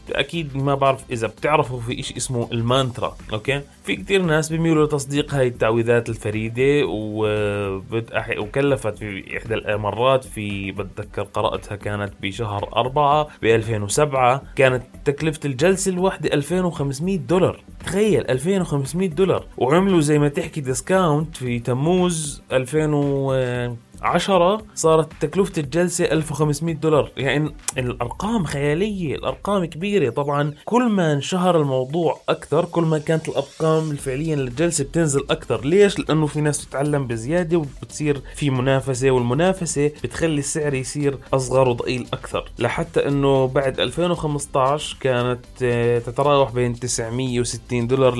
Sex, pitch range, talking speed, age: male, 120-160 Hz, 125 wpm, 20-39